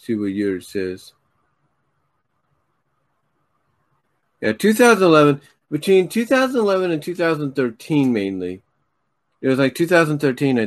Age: 40-59